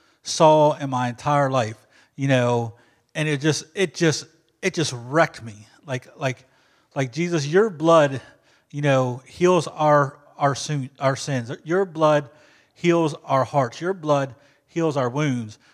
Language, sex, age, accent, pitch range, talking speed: English, male, 30-49, American, 130-160 Hz, 155 wpm